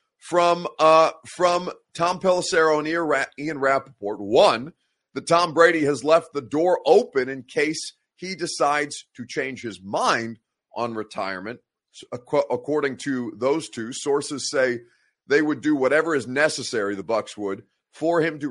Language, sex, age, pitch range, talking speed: English, male, 30-49, 120-160 Hz, 145 wpm